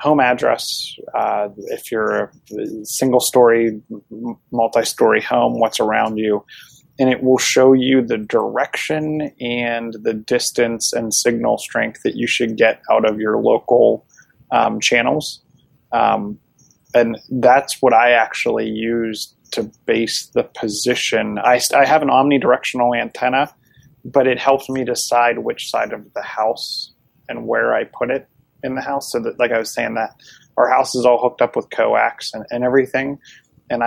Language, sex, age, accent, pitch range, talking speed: English, male, 30-49, American, 115-130 Hz, 160 wpm